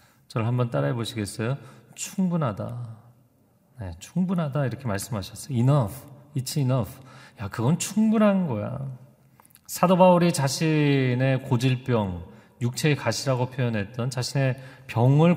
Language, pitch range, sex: Korean, 115-145 Hz, male